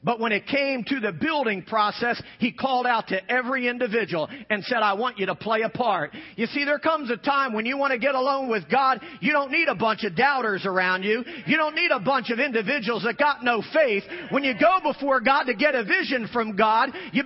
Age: 40-59